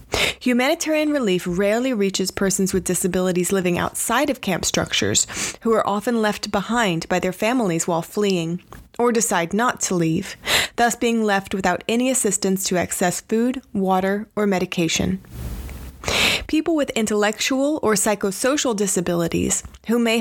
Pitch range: 180-230 Hz